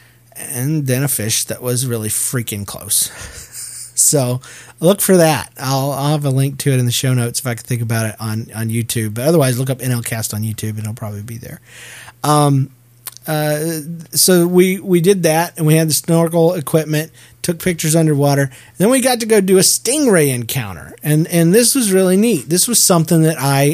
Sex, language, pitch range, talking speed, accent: male, English, 120-165 Hz, 205 wpm, American